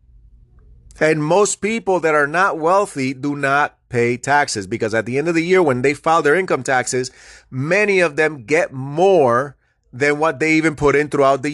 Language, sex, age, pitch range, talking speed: English, male, 30-49, 135-200 Hz, 190 wpm